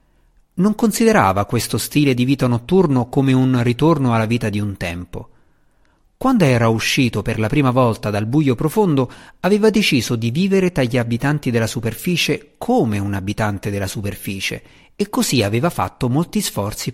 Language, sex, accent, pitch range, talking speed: Italian, male, native, 110-150 Hz, 160 wpm